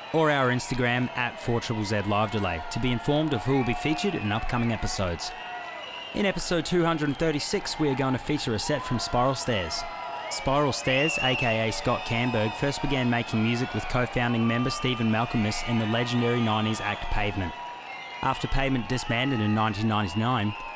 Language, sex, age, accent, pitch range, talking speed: English, male, 20-39, Australian, 110-135 Hz, 160 wpm